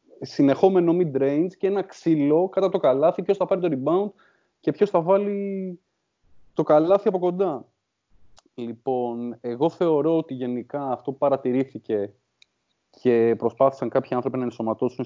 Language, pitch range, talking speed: English, 120-160 Hz, 145 wpm